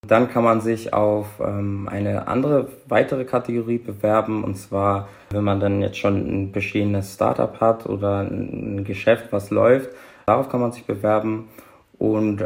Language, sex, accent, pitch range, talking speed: German, male, German, 105-115 Hz, 155 wpm